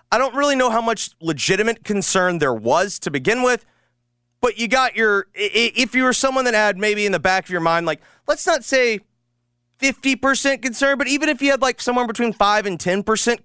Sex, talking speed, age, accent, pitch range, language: male, 210 wpm, 30-49, American, 150-230 Hz, English